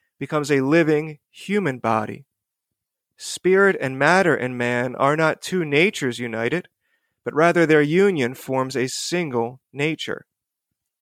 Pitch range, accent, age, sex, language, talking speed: 130-155 Hz, American, 30-49, male, English, 125 wpm